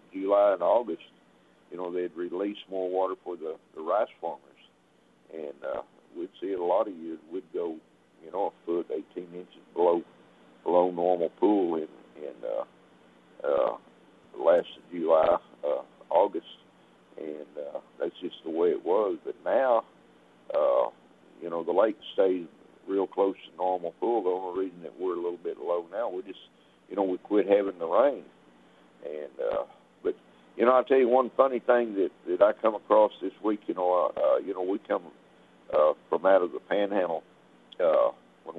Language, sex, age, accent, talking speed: English, male, 60-79, American, 180 wpm